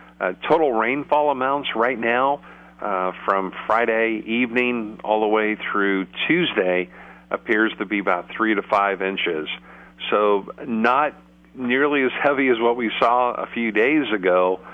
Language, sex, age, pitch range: English, male, 50-69, 95-120 Hz